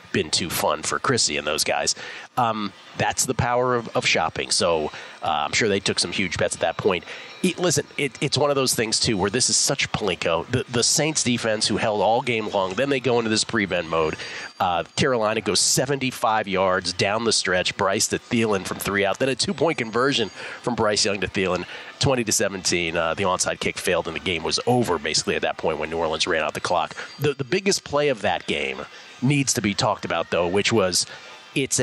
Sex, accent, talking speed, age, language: male, American, 225 wpm, 30-49, English